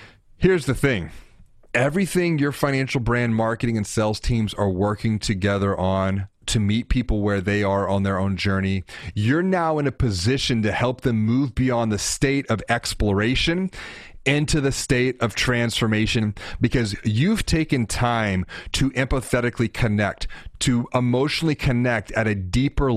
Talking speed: 150 wpm